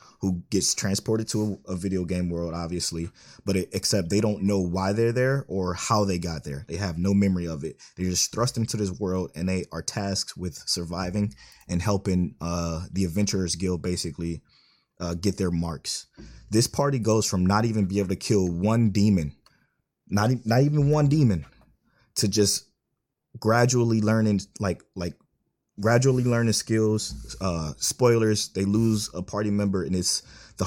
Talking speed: 170 wpm